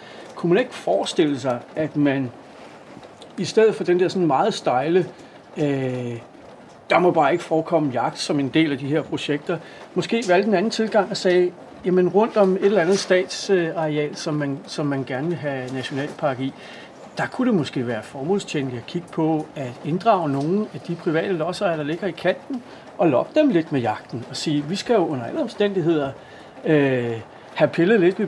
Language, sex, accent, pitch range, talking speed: Danish, male, native, 145-195 Hz, 195 wpm